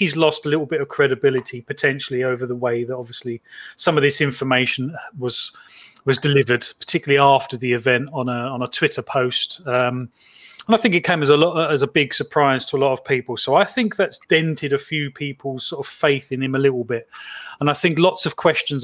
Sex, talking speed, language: male, 225 wpm, English